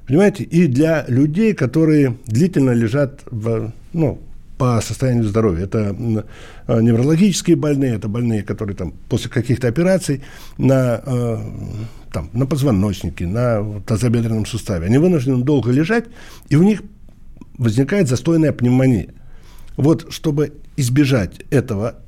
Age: 60-79